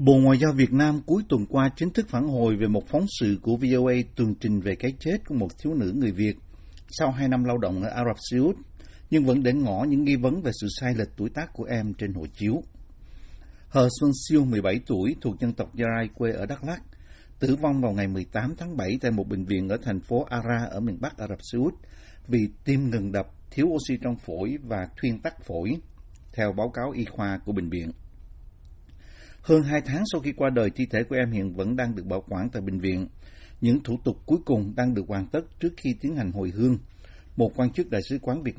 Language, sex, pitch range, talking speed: Vietnamese, male, 100-135 Hz, 240 wpm